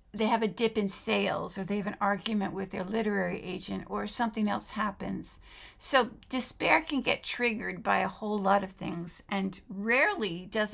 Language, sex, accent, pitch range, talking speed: English, female, American, 190-230 Hz, 185 wpm